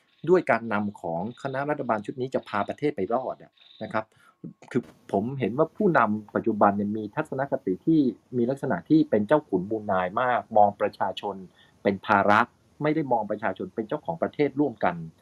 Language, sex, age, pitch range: Thai, male, 30-49, 105-155 Hz